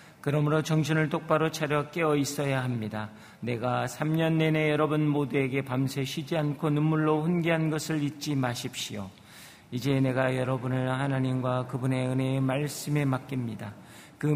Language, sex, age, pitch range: Korean, male, 40-59, 125-150 Hz